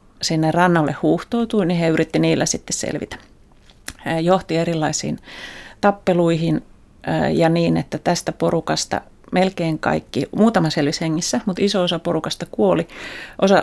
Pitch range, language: 165-195 Hz, Finnish